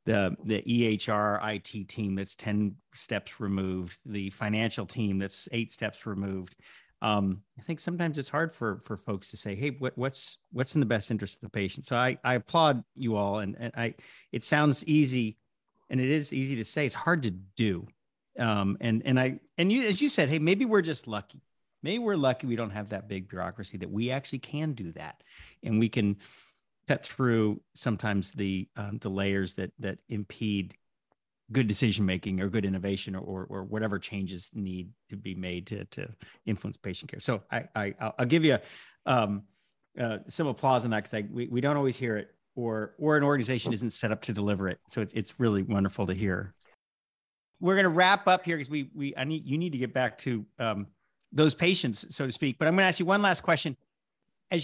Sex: male